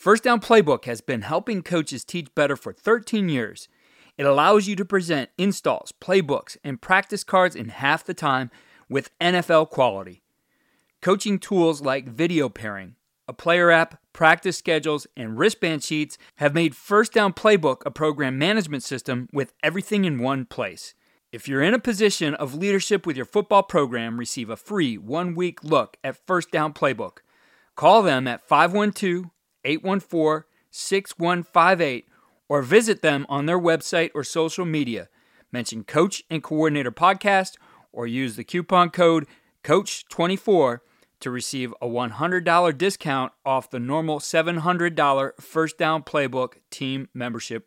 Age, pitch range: 30-49, 135-185 Hz